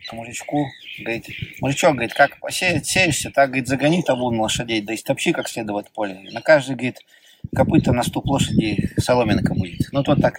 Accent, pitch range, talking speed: native, 125-155 Hz, 180 wpm